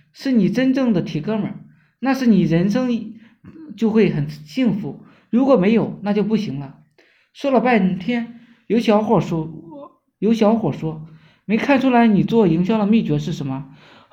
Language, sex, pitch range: Chinese, male, 180-245 Hz